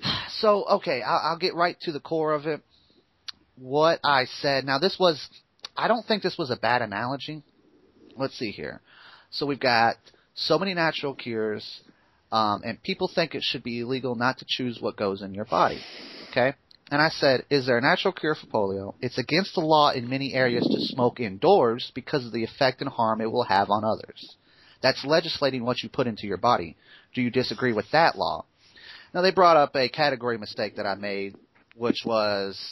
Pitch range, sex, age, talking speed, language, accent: 115-155 Hz, male, 30-49, 200 wpm, English, American